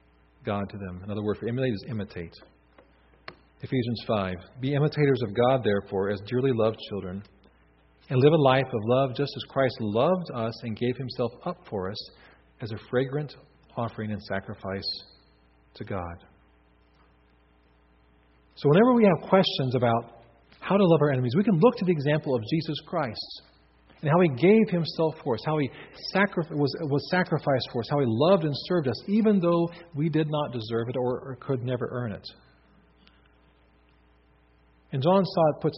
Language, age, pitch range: English, 40-59, 95-155 Hz